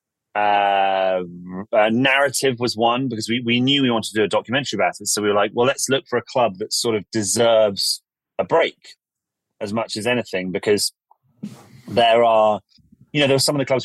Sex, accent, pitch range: male, British, 100-125 Hz